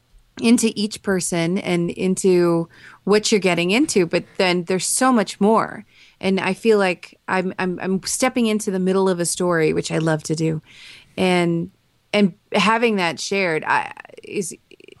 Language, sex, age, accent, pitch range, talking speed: English, female, 30-49, American, 180-220 Hz, 160 wpm